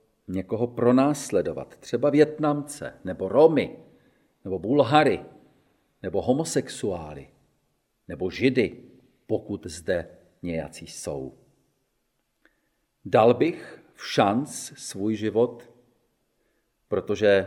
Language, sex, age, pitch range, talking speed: Czech, male, 40-59, 100-135 Hz, 80 wpm